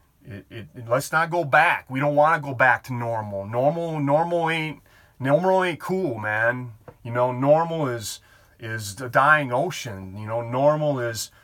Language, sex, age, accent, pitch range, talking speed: English, male, 30-49, American, 115-150 Hz, 180 wpm